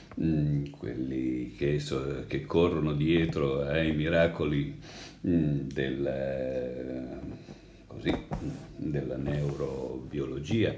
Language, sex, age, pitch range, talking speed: Italian, male, 50-69, 75-95 Hz, 60 wpm